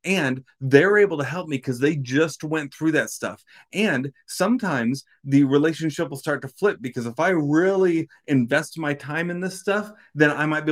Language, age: English, 30-49